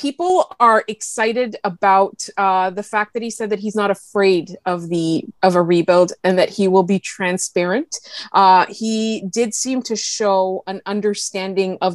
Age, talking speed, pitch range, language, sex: 20-39, 170 wpm, 190-225 Hz, English, female